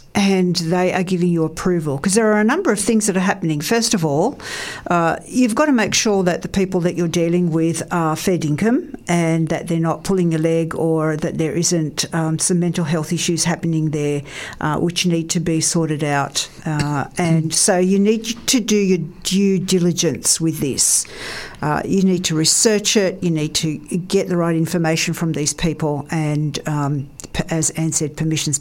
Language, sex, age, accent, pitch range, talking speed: English, female, 60-79, Australian, 160-195 Hz, 195 wpm